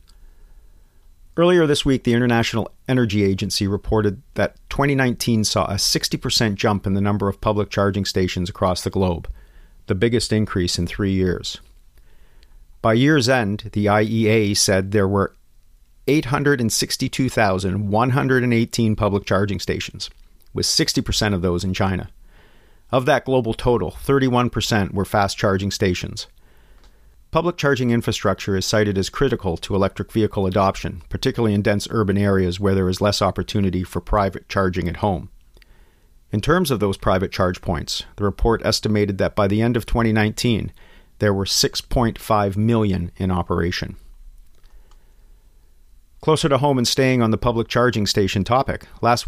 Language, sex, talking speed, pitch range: English, male, 140 wpm, 95-115 Hz